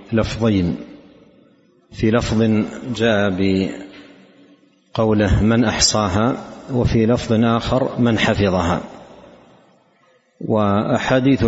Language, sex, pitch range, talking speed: Arabic, male, 100-115 Hz, 70 wpm